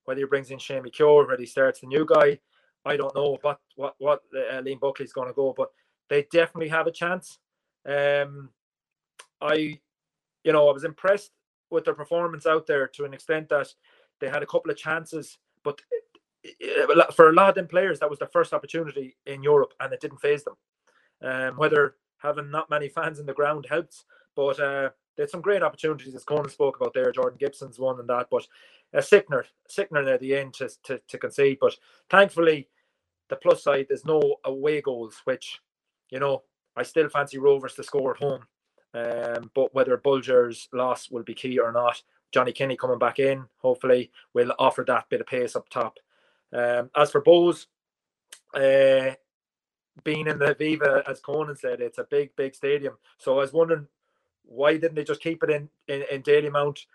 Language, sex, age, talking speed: English, male, 20-39, 200 wpm